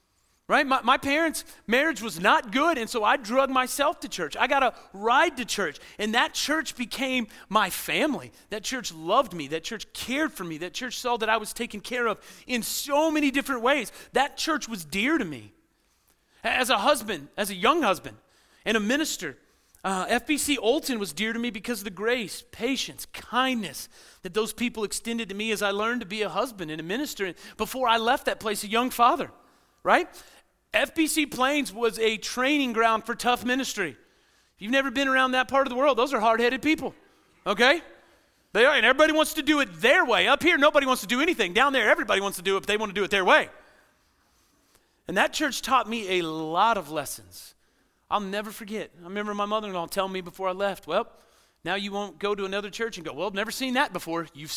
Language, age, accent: English, 40-59, American